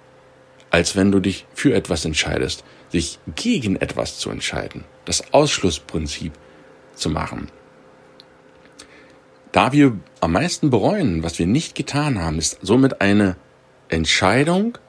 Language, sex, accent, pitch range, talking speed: German, male, German, 85-120 Hz, 120 wpm